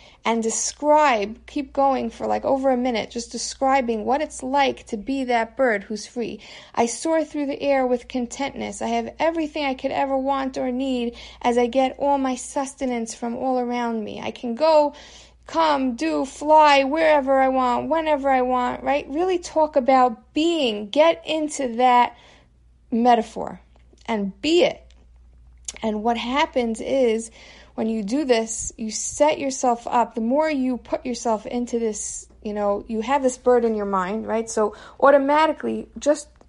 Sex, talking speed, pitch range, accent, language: female, 170 wpm, 225-280 Hz, American, English